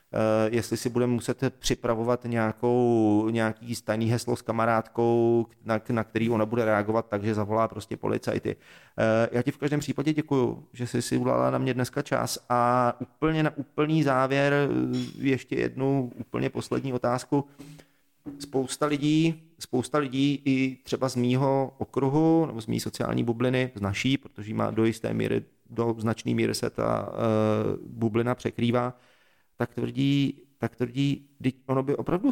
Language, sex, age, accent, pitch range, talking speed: Czech, male, 30-49, native, 115-130 Hz, 155 wpm